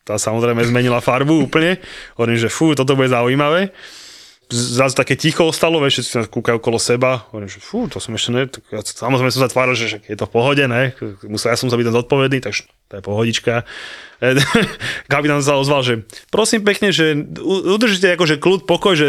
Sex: male